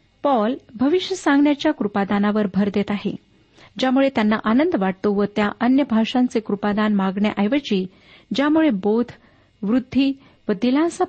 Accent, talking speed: native, 115 wpm